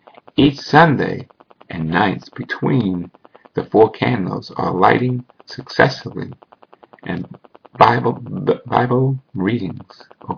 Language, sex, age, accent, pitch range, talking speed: English, male, 50-69, American, 95-120 Hz, 95 wpm